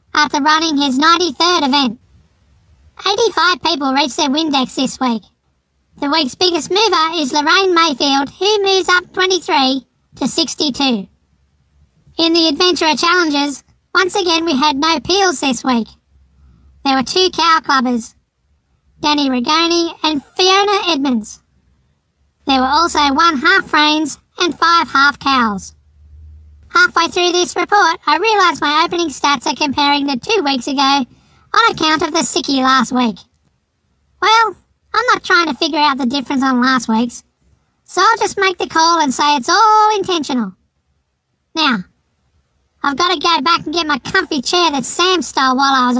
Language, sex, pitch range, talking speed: English, male, 270-355 Hz, 155 wpm